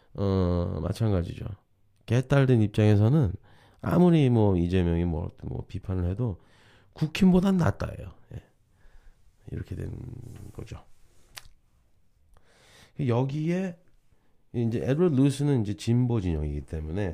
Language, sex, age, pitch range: Korean, male, 30-49, 90-115 Hz